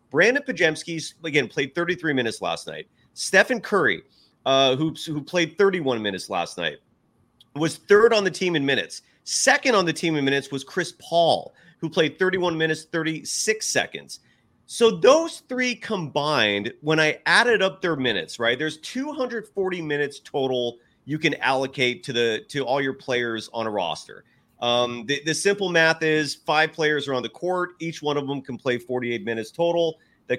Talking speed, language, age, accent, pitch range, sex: 175 wpm, English, 30-49, American, 135-190 Hz, male